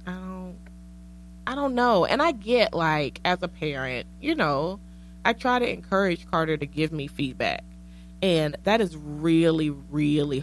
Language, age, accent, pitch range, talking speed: English, 20-39, American, 145-210 Hz, 160 wpm